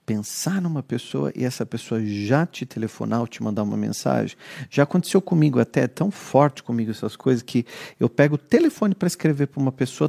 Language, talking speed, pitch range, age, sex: Portuguese, 200 wpm, 115-155 Hz, 40-59, male